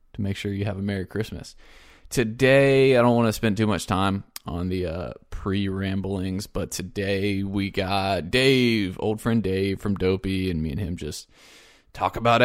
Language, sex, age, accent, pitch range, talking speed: English, male, 20-39, American, 95-115 Hz, 185 wpm